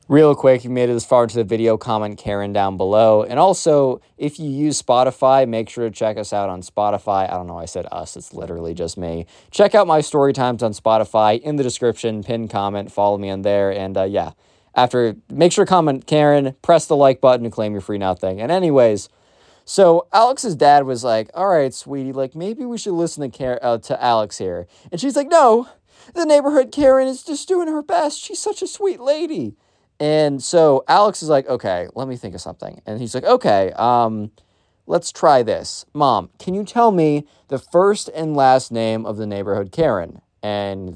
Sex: male